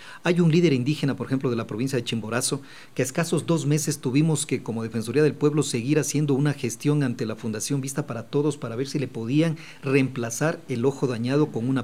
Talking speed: 220 wpm